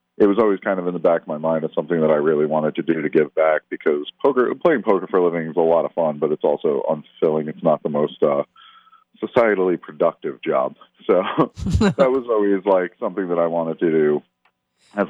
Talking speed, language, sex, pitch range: 230 wpm, English, male, 75-115 Hz